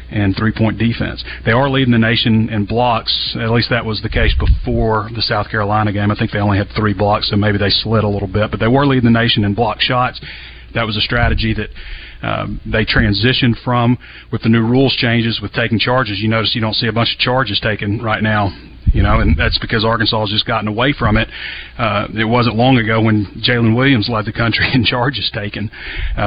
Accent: American